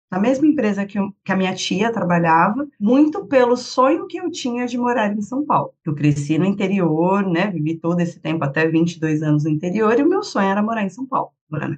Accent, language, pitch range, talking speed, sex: Brazilian, Portuguese, 170-230 Hz, 230 wpm, female